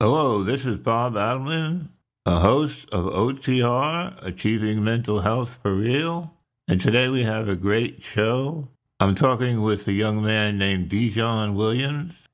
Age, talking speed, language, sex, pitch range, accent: 60-79, 145 wpm, English, male, 95-120 Hz, American